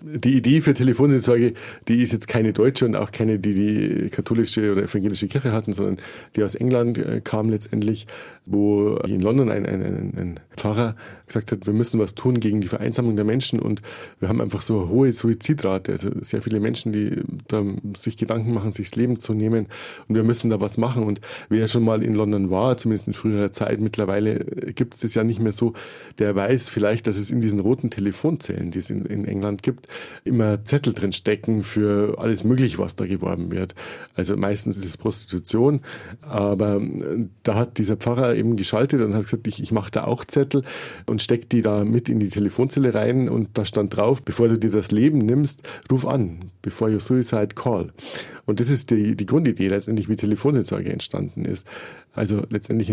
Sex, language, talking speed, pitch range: male, German, 195 wpm, 105-120 Hz